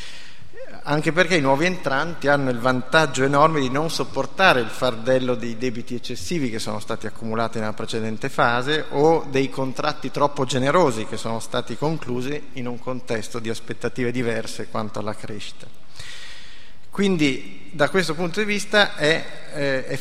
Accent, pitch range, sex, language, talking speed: native, 120-150 Hz, male, Italian, 150 wpm